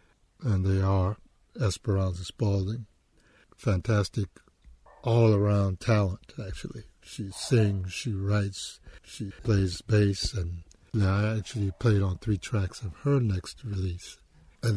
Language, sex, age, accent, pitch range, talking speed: English, male, 60-79, American, 95-110 Hz, 115 wpm